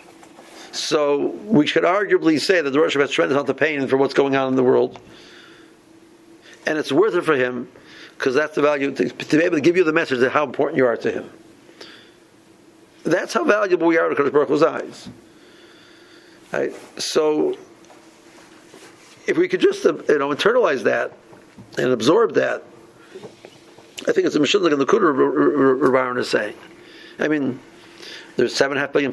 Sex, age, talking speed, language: male, 50-69, 180 wpm, English